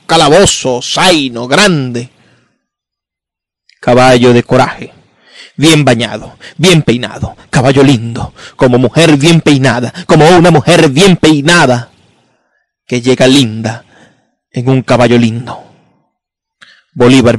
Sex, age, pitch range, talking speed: male, 30-49, 130-170 Hz, 100 wpm